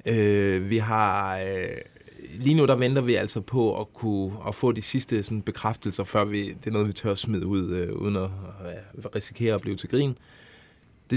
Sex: male